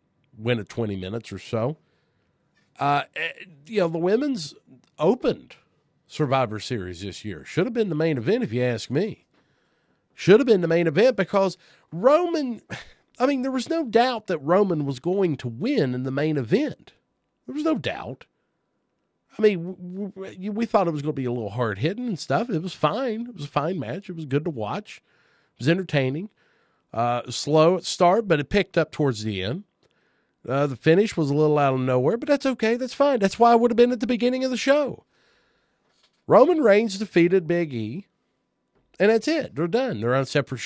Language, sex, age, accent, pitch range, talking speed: English, male, 40-59, American, 125-205 Hz, 200 wpm